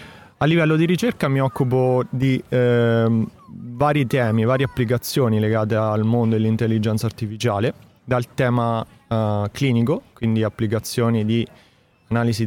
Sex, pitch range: male, 110-125 Hz